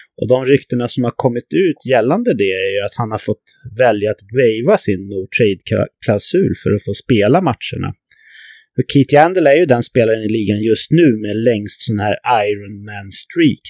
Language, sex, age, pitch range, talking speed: English, male, 30-49, 105-145 Hz, 185 wpm